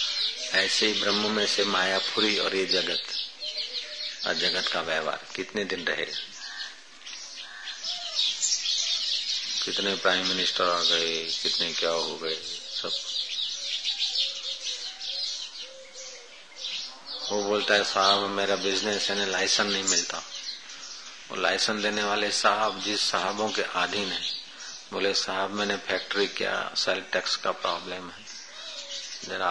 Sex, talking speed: male, 115 wpm